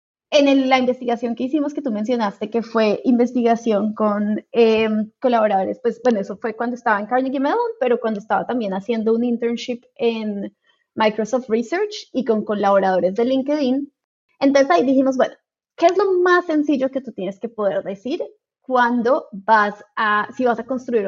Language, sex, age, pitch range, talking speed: Spanish, female, 20-39, 210-265 Hz, 175 wpm